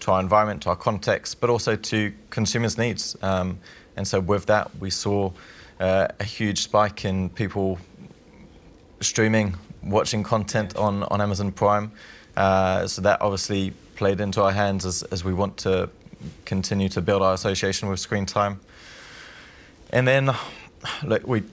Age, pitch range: 20-39, 95-105 Hz